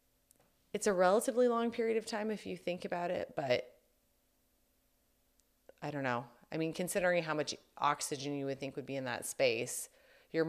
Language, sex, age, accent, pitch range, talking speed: English, female, 30-49, American, 130-175 Hz, 175 wpm